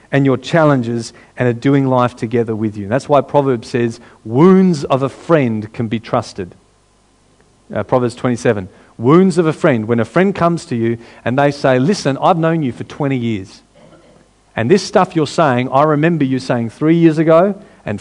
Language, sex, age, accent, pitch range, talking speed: English, male, 40-59, Australian, 120-160 Hz, 190 wpm